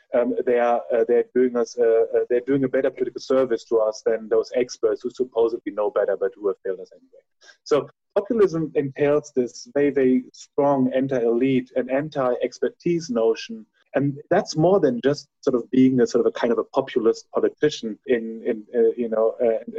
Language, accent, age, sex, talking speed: English, German, 30-49, male, 200 wpm